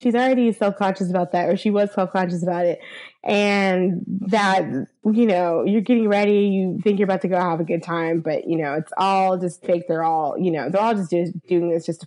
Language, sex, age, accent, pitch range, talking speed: English, female, 20-39, American, 195-280 Hz, 235 wpm